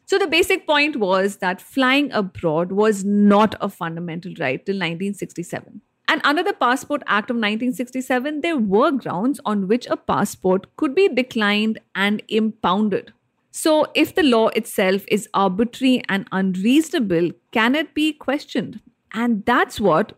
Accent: Indian